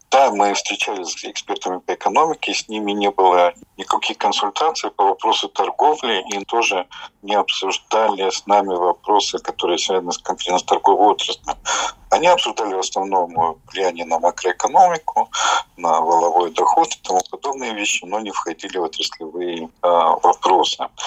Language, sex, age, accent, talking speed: Russian, male, 50-69, native, 140 wpm